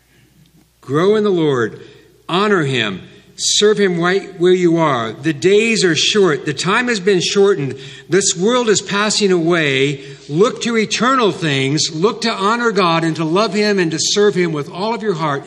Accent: American